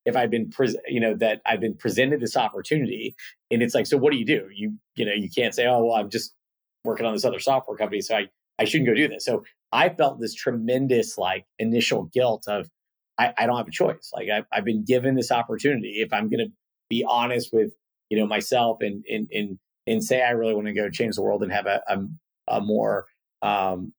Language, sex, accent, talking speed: English, male, American, 235 wpm